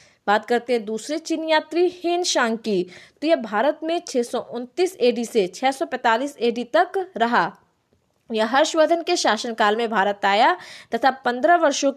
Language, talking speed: Hindi, 140 wpm